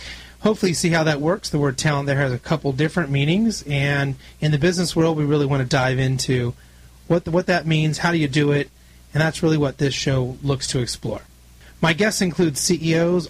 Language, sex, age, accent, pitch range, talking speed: English, male, 30-49, American, 130-165 Hz, 220 wpm